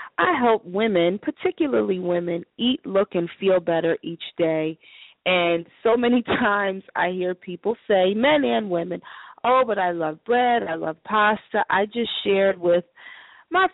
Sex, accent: female, American